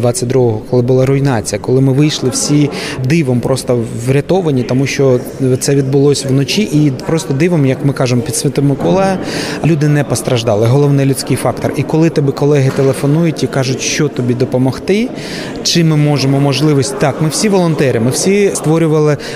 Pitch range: 130-155 Hz